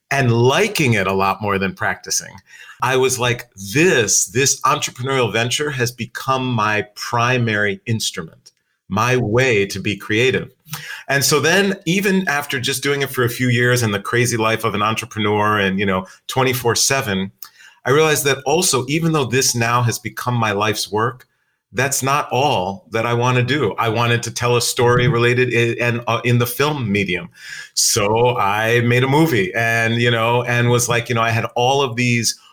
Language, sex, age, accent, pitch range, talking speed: English, male, 40-59, American, 110-135 Hz, 190 wpm